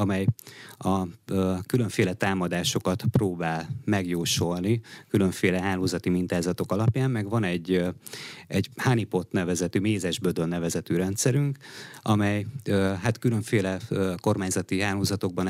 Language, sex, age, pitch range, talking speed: Hungarian, male, 30-49, 95-115 Hz, 115 wpm